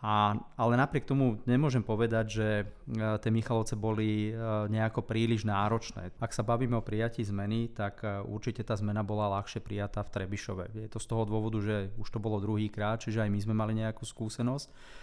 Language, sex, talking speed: Slovak, male, 180 wpm